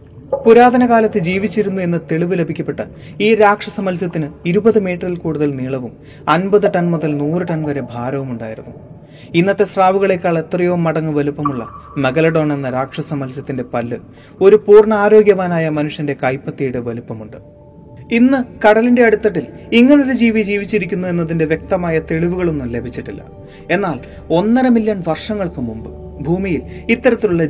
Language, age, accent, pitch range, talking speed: Malayalam, 30-49, native, 145-200 Hz, 115 wpm